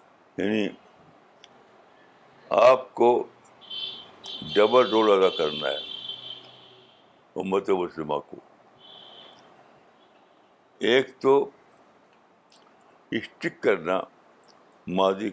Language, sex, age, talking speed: Urdu, male, 60-79, 60 wpm